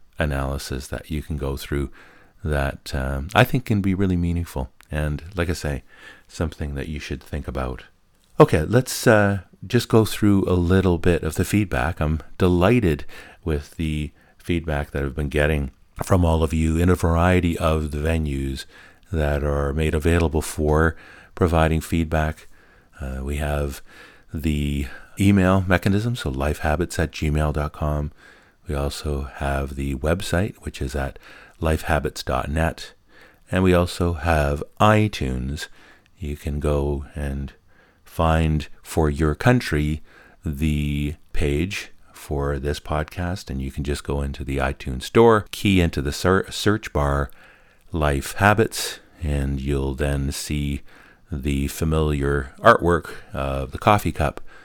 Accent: American